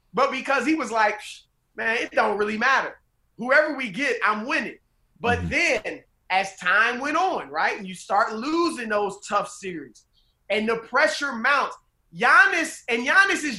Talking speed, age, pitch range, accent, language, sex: 165 wpm, 30-49, 205-260 Hz, American, English, male